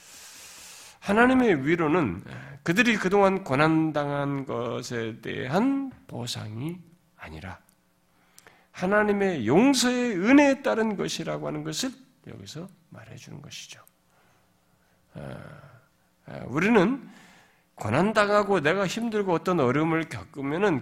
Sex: male